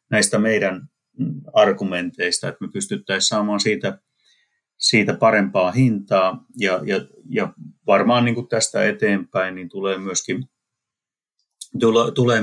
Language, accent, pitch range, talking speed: Finnish, native, 90-115 Hz, 110 wpm